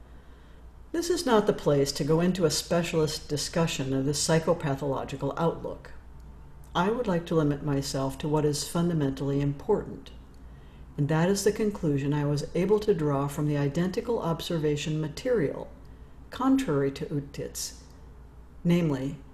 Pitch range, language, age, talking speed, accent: 140-175 Hz, English, 60-79, 140 wpm, American